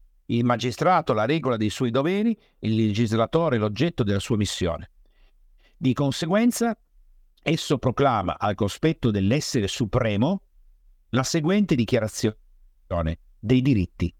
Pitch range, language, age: 100-160 Hz, Italian, 50-69